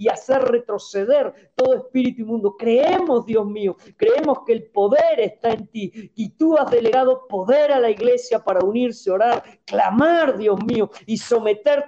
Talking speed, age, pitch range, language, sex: 165 wpm, 50-69, 215-270 Hz, Spanish, female